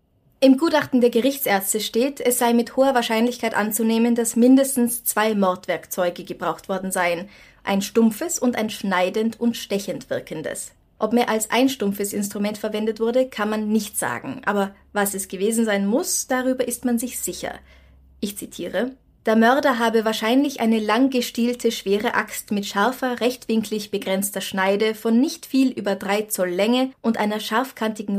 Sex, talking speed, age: female, 160 wpm, 20-39